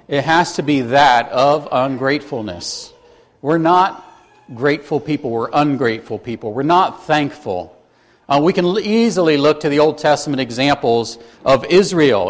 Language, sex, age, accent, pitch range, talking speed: English, male, 50-69, American, 140-195 Hz, 140 wpm